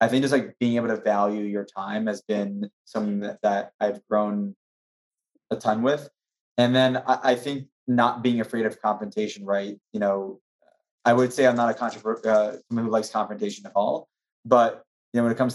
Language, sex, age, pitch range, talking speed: English, male, 20-39, 105-125 Hz, 200 wpm